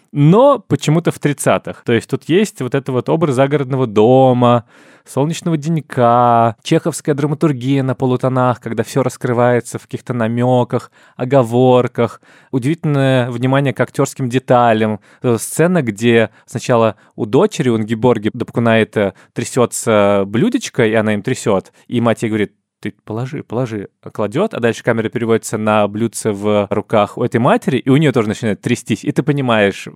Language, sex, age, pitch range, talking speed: Russian, male, 20-39, 110-140 Hz, 150 wpm